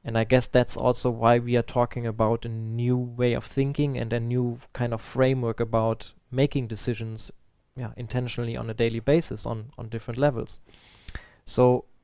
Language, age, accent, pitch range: English, 20-39, German, 115-130 Hz